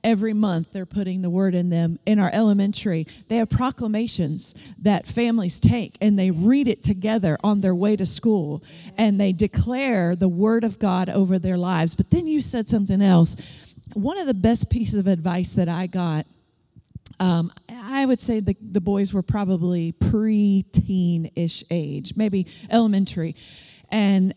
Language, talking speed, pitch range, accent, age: English, 165 wpm, 185-225 Hz, American, 40-59